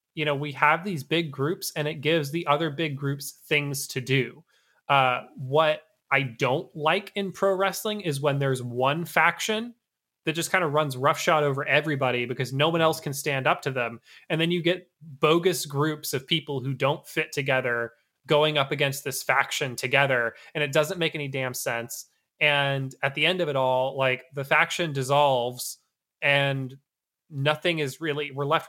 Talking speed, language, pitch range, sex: 185 wpm, English, 135-170 Hz, male